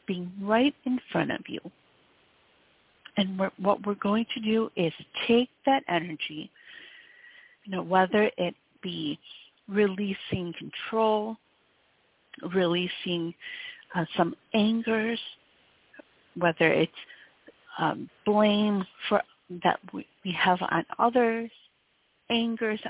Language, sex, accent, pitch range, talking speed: English, female, American, 175-225 Hz, 100 wpm